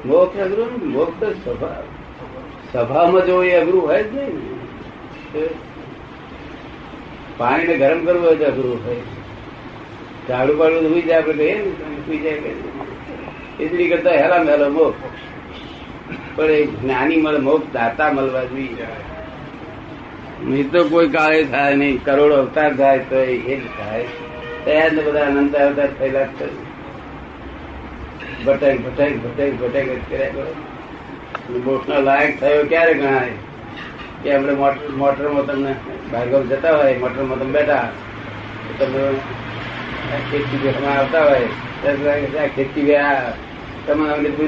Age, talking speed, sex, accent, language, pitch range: 60-79, 70 wpm, male, native, Gujarati, 135-155 Hz